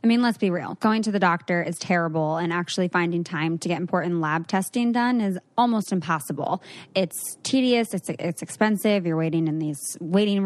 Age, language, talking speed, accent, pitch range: 20-39, English, 195 wpm, American, 170-205 Hz